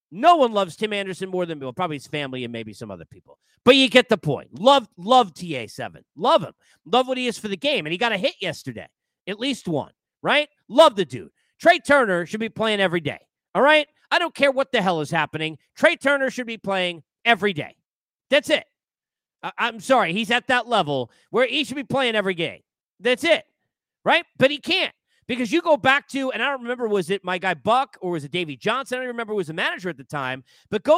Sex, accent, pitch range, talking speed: male, American, 185-270 Hz, 235 wpm